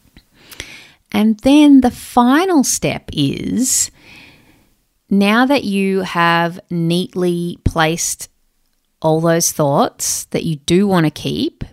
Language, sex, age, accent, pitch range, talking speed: English, female, 30-49, Australian, 160-210 Hz, 105 wpm